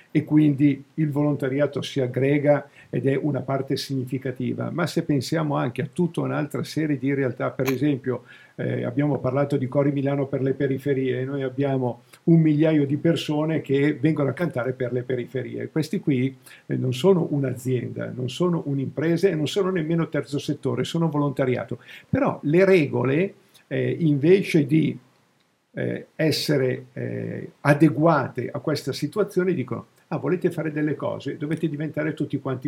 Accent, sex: native, male